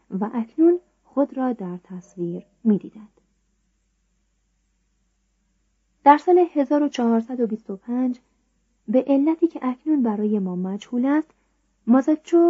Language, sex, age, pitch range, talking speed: Persian, female, 30-49, 200-270 Hz, 90 wpm